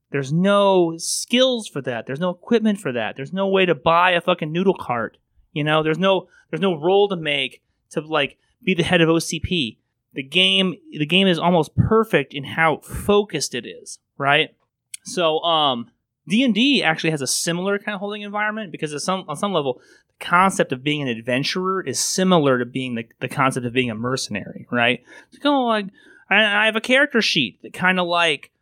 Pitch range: 135-185 Hz